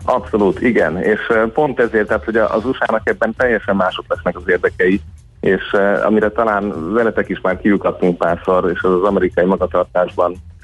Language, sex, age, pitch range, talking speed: Hungarian, male, 30-49, 85-95 Hz, 170 wpm